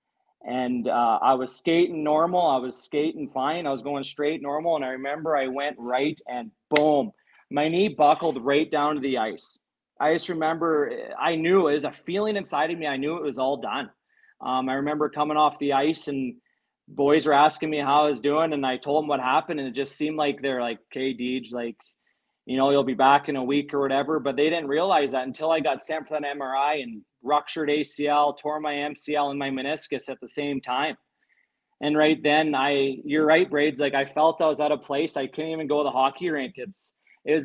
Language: English